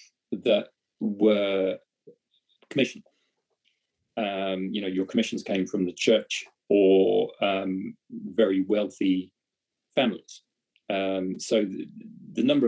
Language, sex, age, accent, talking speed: English, male, 30-49, British, 105 wpm